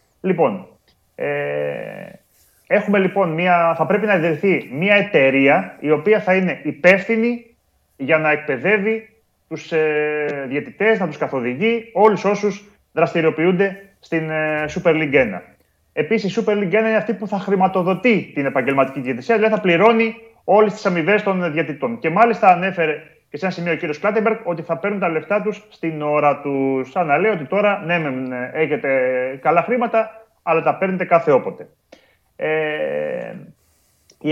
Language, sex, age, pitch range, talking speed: Greek, male, 30-49, 150-205 Hz, 150 wpm